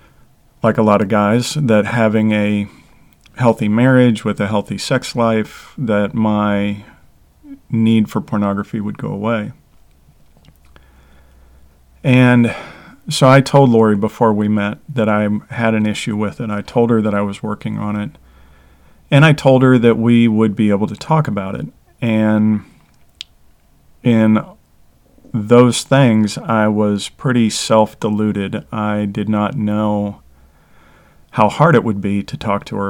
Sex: male